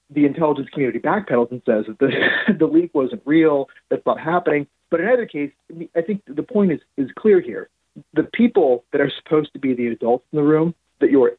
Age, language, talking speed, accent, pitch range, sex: 40-59, English, 215 wpm, American, 125-165 Hz, male